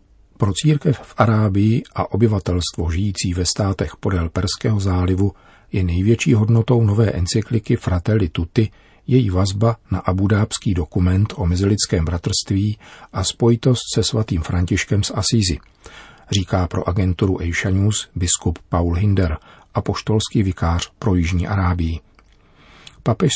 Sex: male